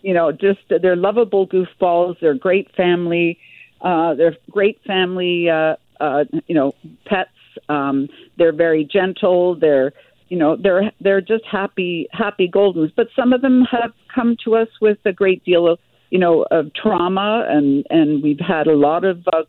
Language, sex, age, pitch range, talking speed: English, female, 50-69, 165-215 Hz, 170 wpm